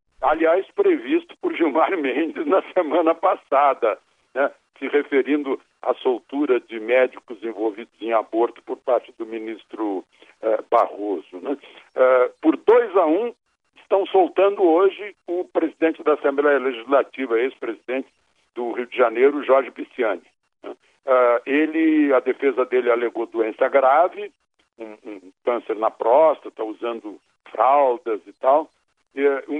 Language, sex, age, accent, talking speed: Portuguese, male, 60-79, Brazilian, 125 wpm